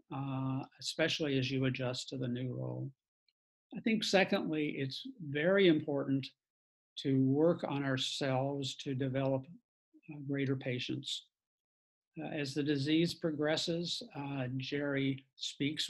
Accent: American